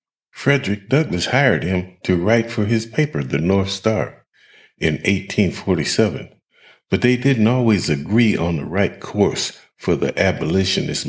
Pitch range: 80-110 Hz